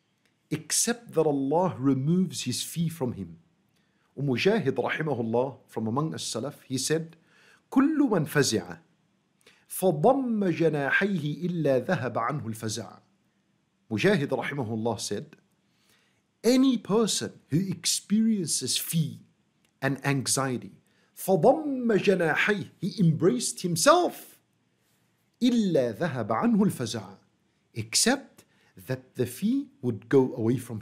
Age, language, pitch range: 50-69, English, 140-235 Hz